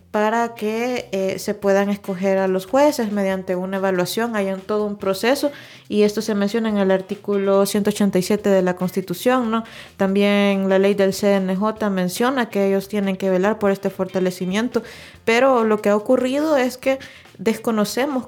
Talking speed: 165 wpm